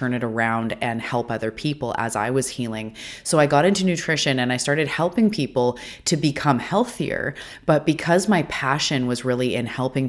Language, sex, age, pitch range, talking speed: English, female, 30-49, 120-140 Hz, 190 wpm